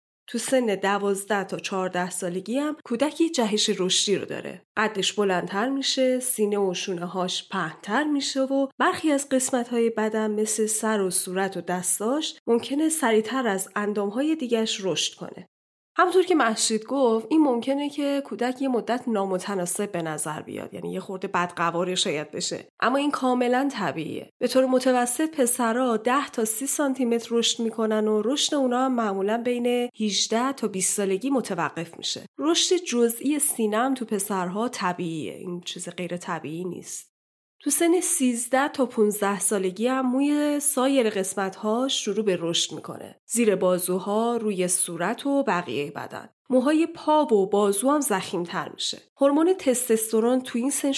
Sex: female